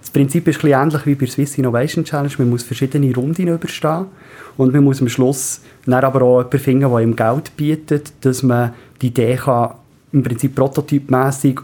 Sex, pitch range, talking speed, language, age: male, 125-145 Hz, 200 wpm, German, 30-49